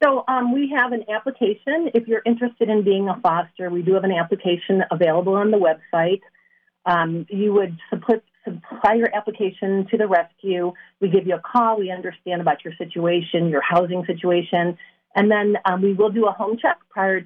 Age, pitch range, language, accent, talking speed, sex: 40-59, 175-215 Hz, English, American, 190 wpm, female